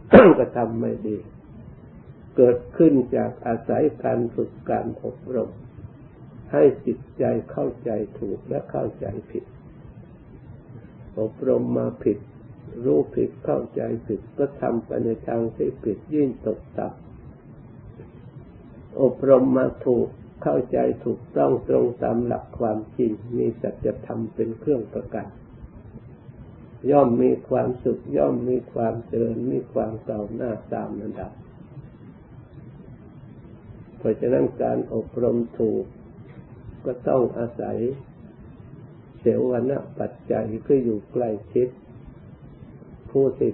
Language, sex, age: Thai, male, 60-79